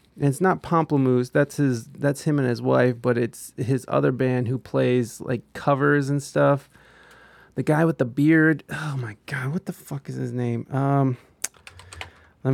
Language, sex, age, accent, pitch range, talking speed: English, male, 30-49, American, 115-145 Hz, 180 wpm